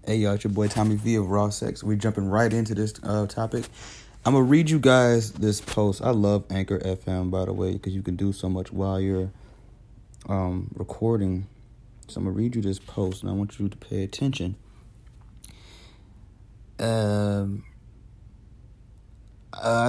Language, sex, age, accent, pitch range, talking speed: English, male, 30-49, American, 100-115 Hz, 170 wpm